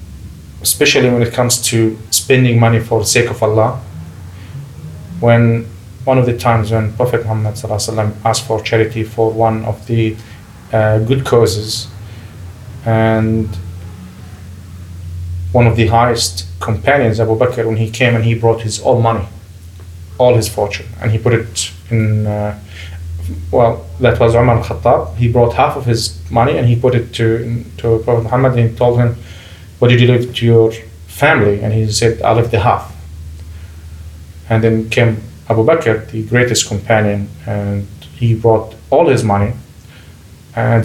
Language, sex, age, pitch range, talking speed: English, male, 20-39, 100-120 Hz, 160 wpm